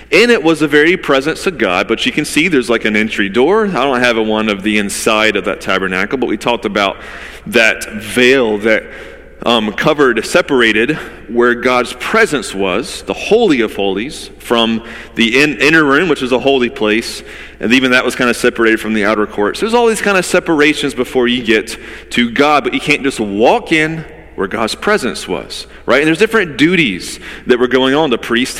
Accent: American